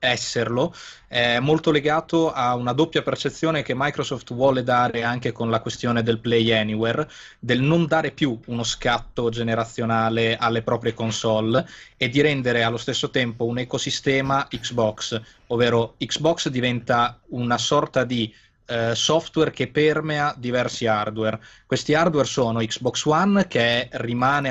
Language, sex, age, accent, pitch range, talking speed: Italian, male, 20-39, native, 115-135 Hz, 135 wpm